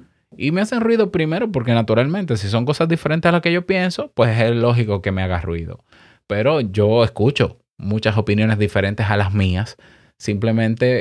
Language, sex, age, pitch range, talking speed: Spanish, male, 20-39, 105-145 Hz, 180 wpm